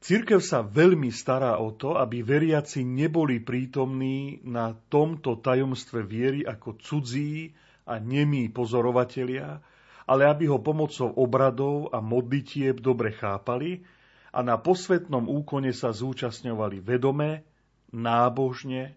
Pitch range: 120-145 Hz